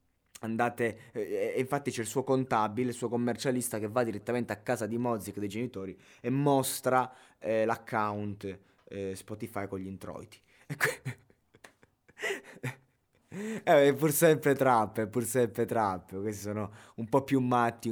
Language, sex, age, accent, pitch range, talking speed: Italian, male, 20-39, native, 110-130 Hz, 145 wpm